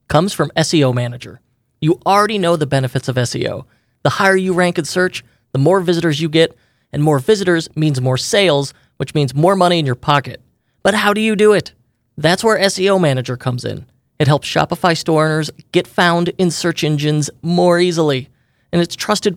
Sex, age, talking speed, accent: male, 30-49, 190 wpm, American